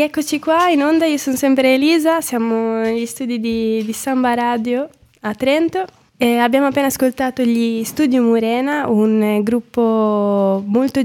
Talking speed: 145 wpm